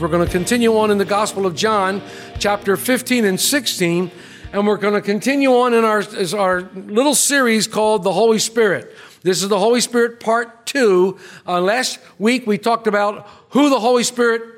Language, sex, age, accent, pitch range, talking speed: English, male, 50-69, American, 165-225 Hz, 190 wpm